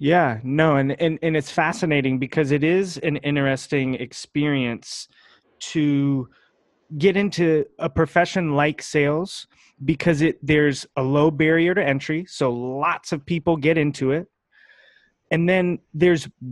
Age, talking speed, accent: 20-39, 140 wpm, American